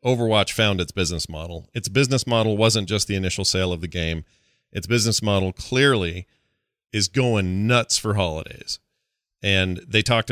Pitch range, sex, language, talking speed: 90-115 Hz, male, English, 165 wpm